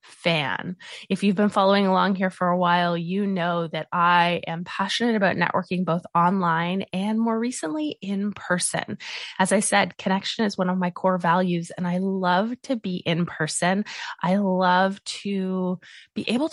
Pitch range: 175-210 Hz